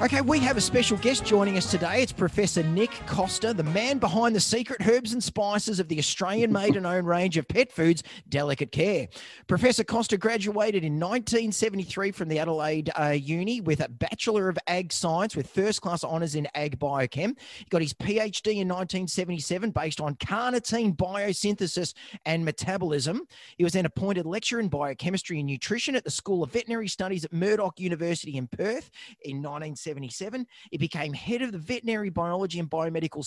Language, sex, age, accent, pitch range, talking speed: English, male, 30-49, Australian, 160-215 Hz, 180 wpm